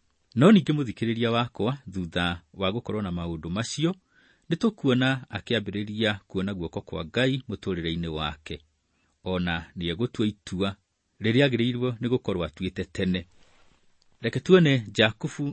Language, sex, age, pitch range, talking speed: English, male, 40-59, 85-125 Hz, 110 wpm